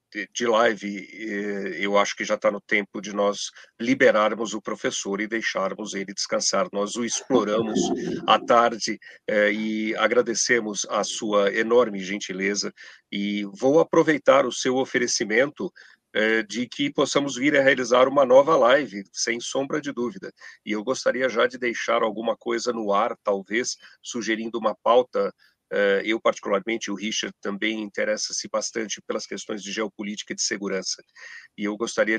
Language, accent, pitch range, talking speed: Portuguese, Brazilian, 105-125 Hz, 145 wpm